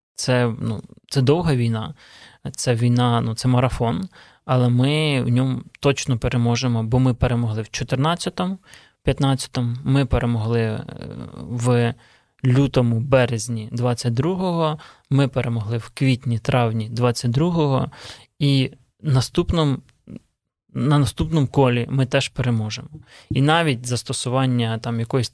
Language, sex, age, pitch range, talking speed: Ukrainian, male, 20-39, 120-140 Hz, 105 wpm